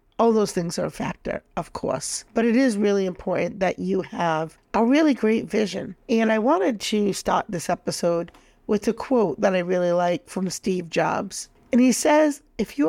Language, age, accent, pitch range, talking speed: English, 50-69, American, 180-230 Hz, 195 wpm